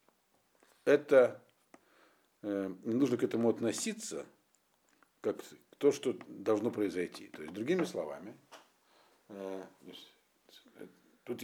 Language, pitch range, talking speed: Russian, 110-170 Hz, 95 wpm